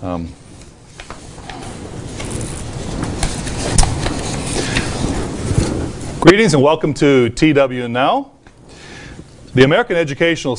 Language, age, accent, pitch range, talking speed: English, 40-59, American, 120-155 Hz, 55 wpm